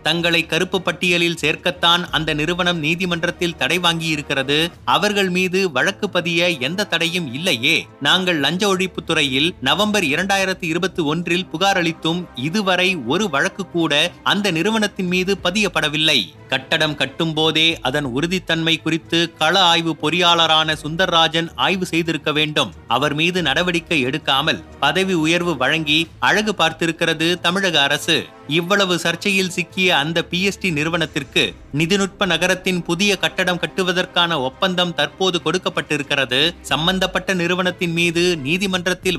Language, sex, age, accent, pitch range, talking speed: Tamil, male, 30-49, native, 155-185 Hz, 115 wpm